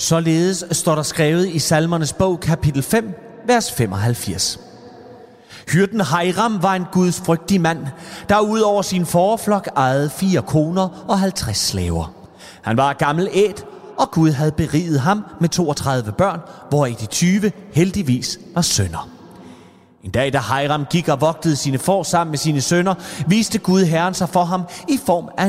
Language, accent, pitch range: Danish, native, 140-190 Hz